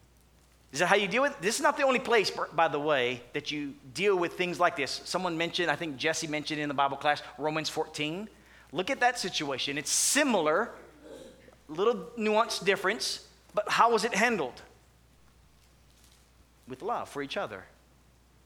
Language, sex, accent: English, male, American